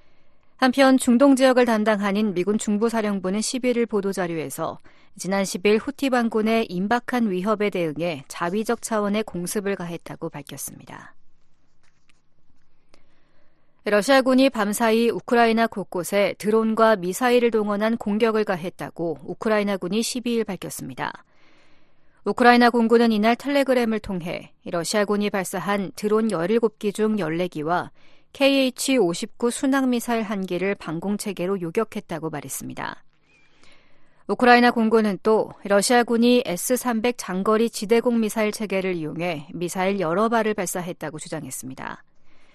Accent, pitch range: native, 180-235 Hz